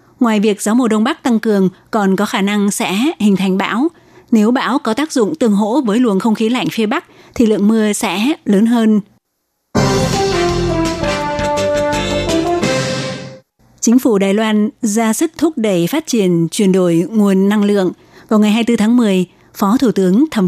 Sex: female